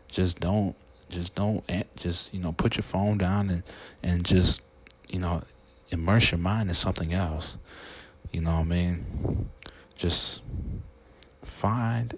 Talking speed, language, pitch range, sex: 145 wpm, English, 80-90 Hz, male